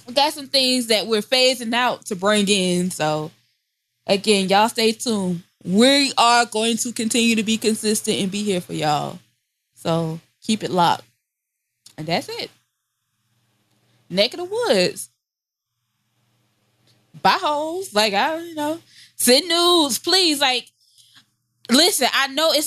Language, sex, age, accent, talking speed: English, female, 20-39, American, 140 wpm